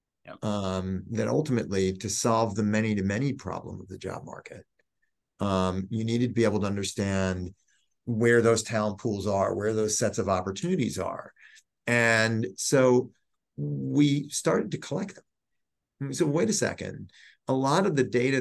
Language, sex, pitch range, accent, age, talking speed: English, male, 95-120 Hz, American, 40-59, 160 wpm